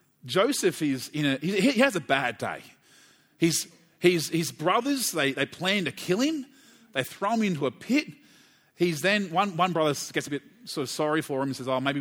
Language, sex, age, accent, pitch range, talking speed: English, male, 30-49, Australian, 140-200 Hz, 215 wpm